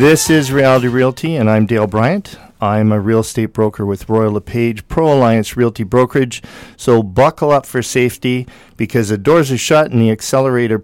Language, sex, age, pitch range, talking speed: English, male, 50-69, 105-130 Hz, 185 wpm